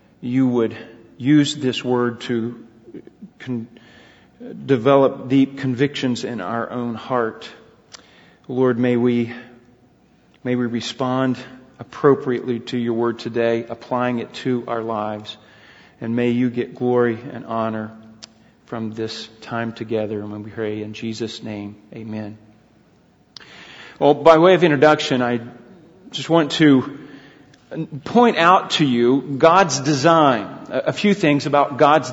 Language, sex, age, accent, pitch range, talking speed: English, male, 40-59, American, 120-165 Hz, 130 wpm